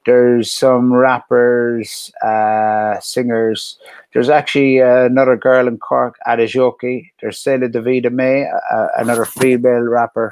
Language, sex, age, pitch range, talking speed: English, male, 30-49, 110-130 Hz, 120 wpm